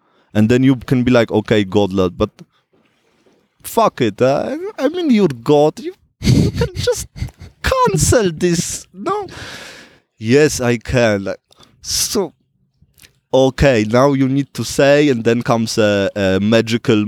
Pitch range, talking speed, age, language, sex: 110-145 Hz, 140 wpm, 20-39, English, male